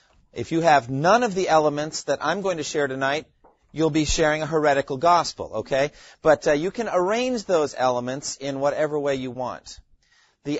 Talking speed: 185 wpm